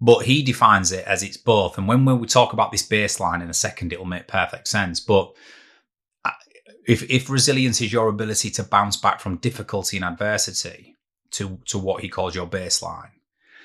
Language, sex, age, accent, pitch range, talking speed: English, male, 30-49, British, 95-120 Hz, 190 wpm